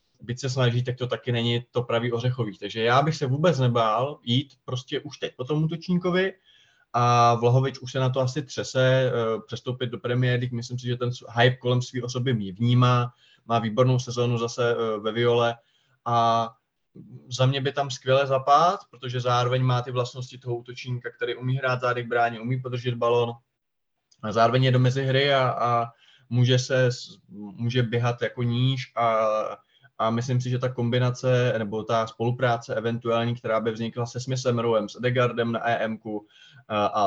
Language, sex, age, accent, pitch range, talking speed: Czech, male, 20-39, native, 115-125 Hz, 170 wpm